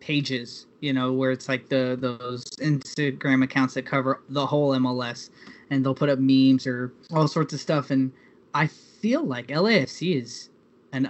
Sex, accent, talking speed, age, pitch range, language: male, American, 175 wpm, 10-29, 125-145 Hz, English